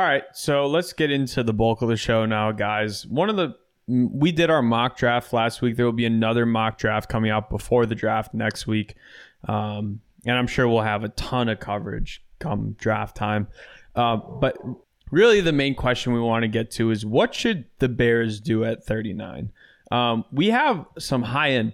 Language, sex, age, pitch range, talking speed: English, male, 20-39, 110-125 Hz, 205 wpm